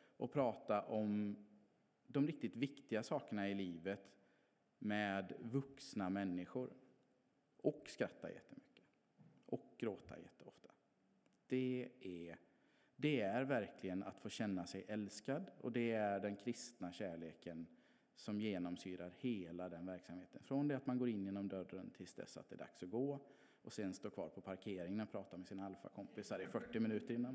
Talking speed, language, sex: 150 wpm, English, male